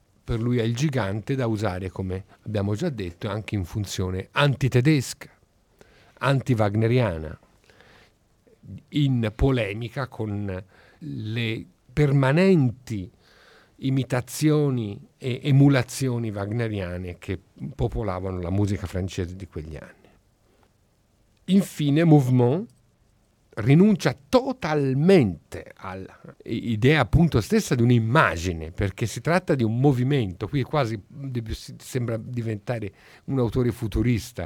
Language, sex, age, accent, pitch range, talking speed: Italian, male, 50-69, native, 100-130 Hz, 95 wpm